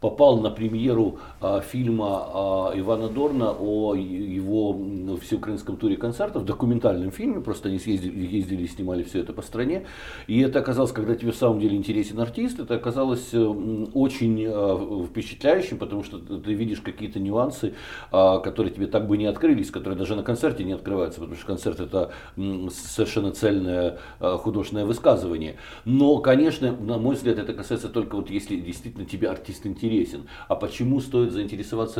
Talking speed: 155 wpm